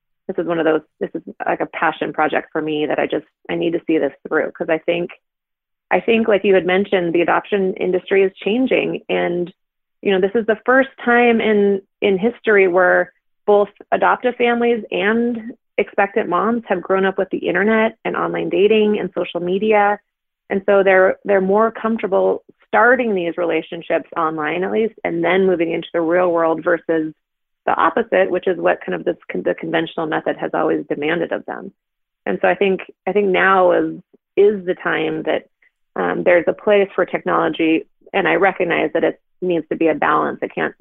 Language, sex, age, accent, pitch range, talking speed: English, female, 30-49, American, 170-210 Hz, 195 wpm